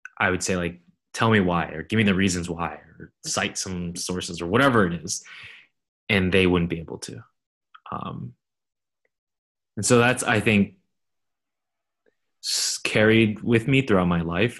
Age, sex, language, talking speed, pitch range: 20-39, male, English, 160 wpm, 90-110 Hz